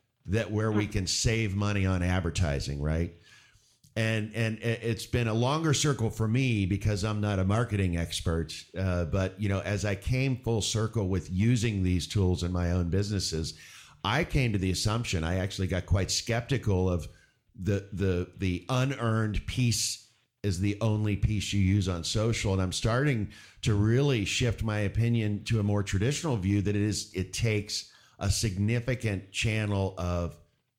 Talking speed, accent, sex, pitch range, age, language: 170 wpm, American, male, 90-110 Hz, 50-69, English